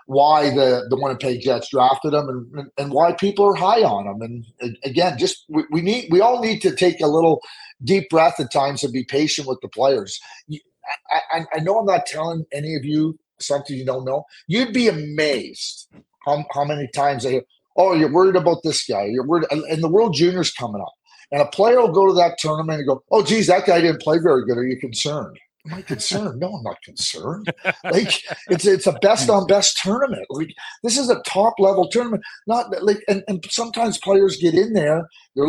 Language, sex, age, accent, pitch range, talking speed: English, male, 40-59, American, 140-195 Hz, 215 wpm